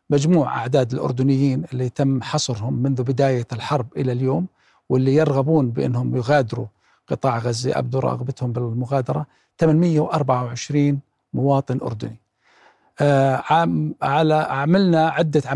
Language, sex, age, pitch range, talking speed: Arabic, male, 40-59, 130-150 Hz, 105 wpm